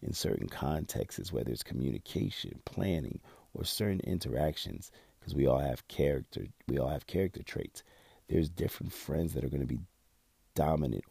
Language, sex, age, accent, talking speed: English, male, 40-59, American, 155 wpm